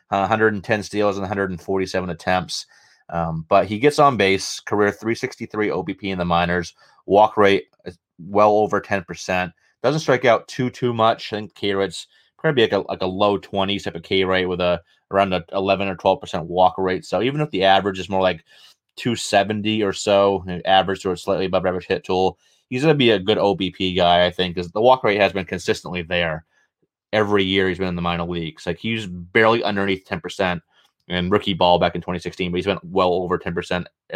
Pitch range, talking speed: 95-110 Hz, 195 wpm